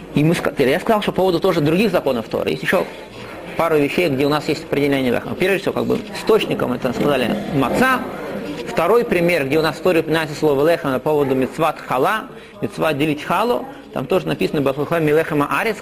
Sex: male